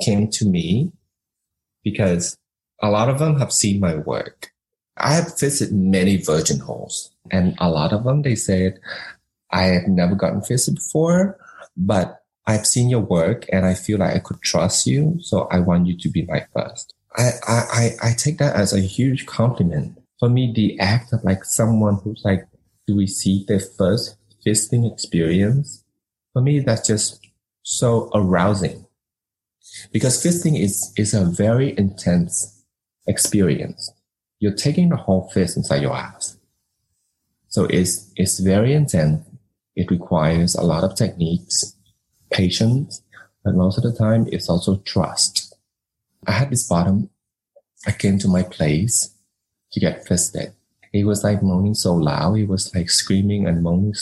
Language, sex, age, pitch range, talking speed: English, male, 30-49, 95-115 Hz, 160 wpm